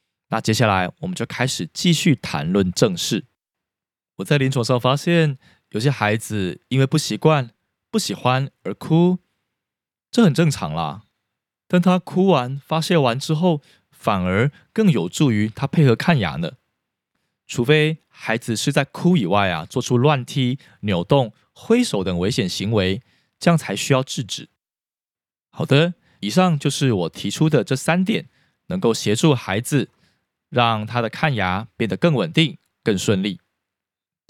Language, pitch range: Chinese, 110-160 Hz